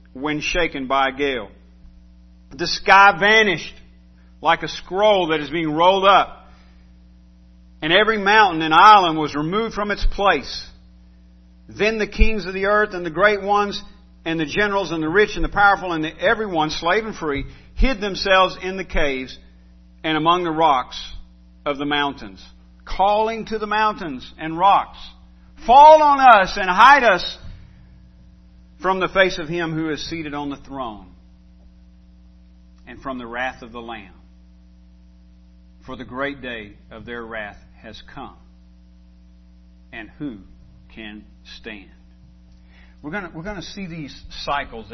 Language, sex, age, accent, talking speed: English, male, 50-69, American, 150 wpm